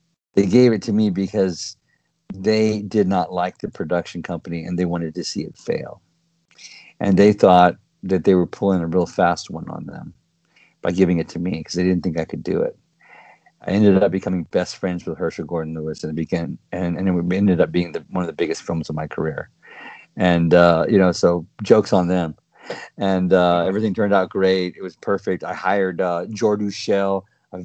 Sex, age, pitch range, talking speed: male, 50-69, 85-100 Hz, 210 wpm